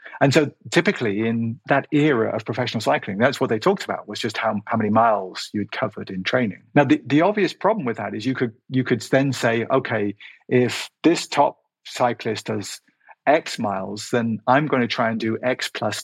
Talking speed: 205 wpm